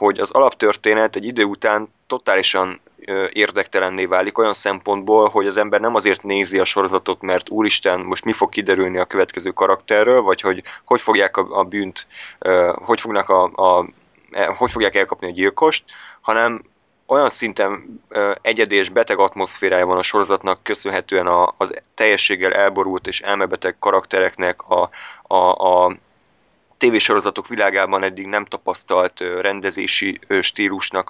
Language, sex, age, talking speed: Hungarian, male, 20-39, 135 wpm